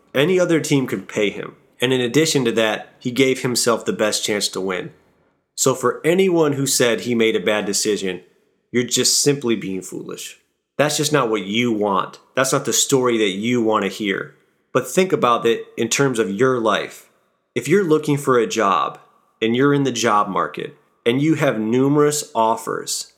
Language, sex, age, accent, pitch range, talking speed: English, male, 30-49, American, 110-145 Hz, 195 wpm